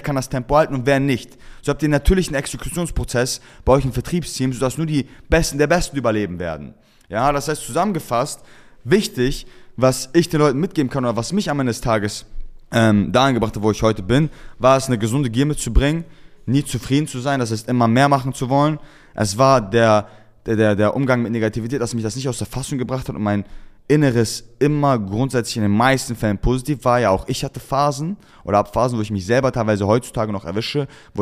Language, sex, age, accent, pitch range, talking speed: German, male, 20-39, German, 110-140 Hz, 215 wpm